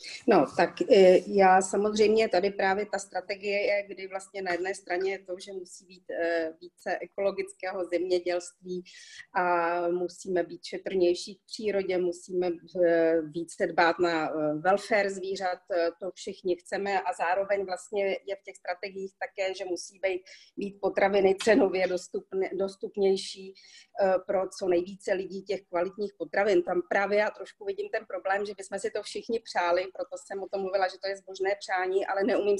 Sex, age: female, 40-59